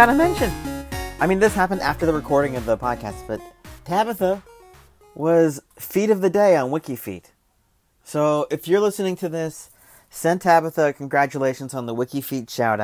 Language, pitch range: English, 110-155 Hz